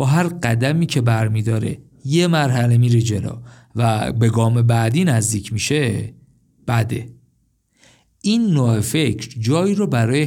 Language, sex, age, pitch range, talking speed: Persian, male, 50-69, 115-150 Hz, 130 wpm